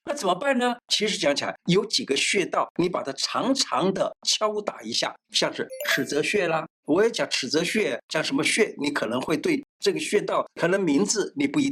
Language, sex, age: Chinese, male, 60-79